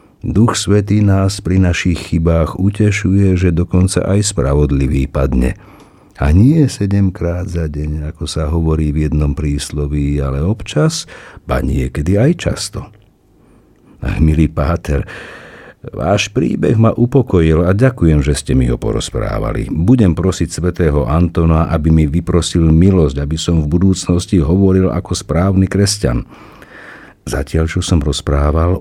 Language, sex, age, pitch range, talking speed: Slovak, male, 50-69, 75-100 Hz, 130 wpm